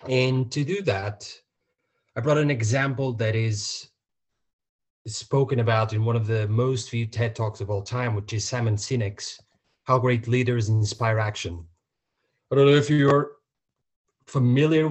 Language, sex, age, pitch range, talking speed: English, male, 30-49, 110-135 Hz, 155 wpm